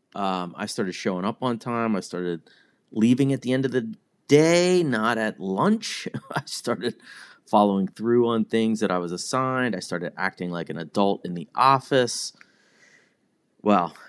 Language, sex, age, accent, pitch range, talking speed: English, male, 30-49, American, 90-120 Hz, 165 wpm